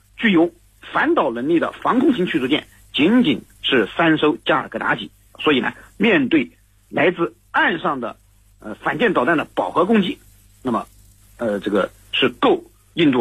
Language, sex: Chinese, male